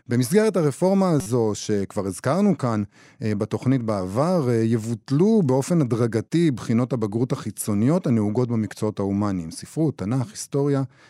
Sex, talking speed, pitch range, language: male, 110 wpm, 115-150 Hz, Hebrew